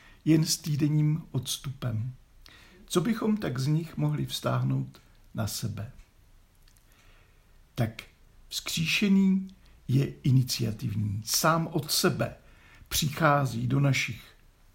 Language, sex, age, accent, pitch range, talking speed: Czech, male, 60-79, native, 115-160 Hz, 95 wpm